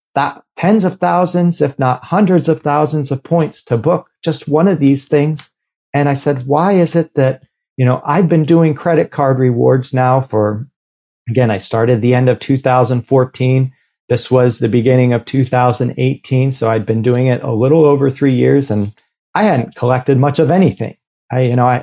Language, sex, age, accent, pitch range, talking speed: English, male, 40-59, American, 115-135 Hz, 200 wpm